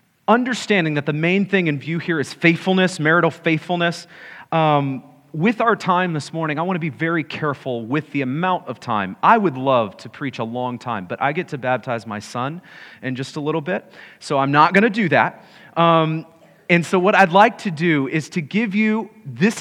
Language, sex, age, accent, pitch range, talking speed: English, male, 30-49, American, 140-180 Hz, 210 wpm